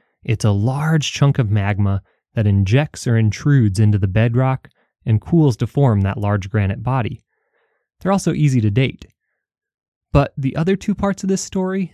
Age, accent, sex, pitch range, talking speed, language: 20-39, American, male, 105-140 Hz, 170 wpm, English